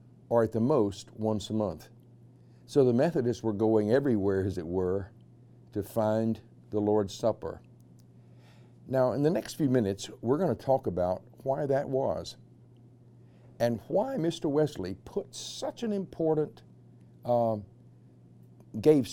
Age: 60-79